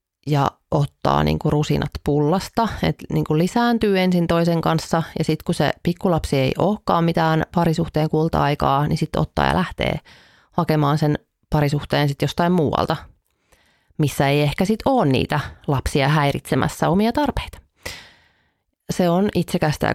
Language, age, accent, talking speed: Finnish, 30-49, native, 130 wpm